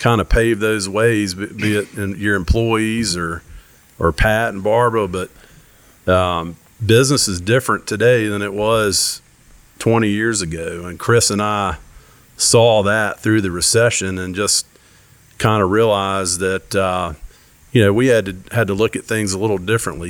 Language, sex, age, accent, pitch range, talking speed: English, male, 40-59, American, 95-115 Hz, 165 wpm